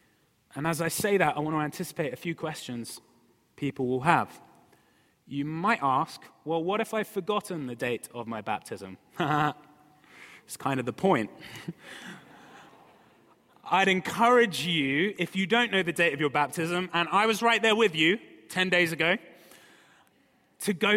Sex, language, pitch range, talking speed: male, English, 150-210 Hz, 165 wpm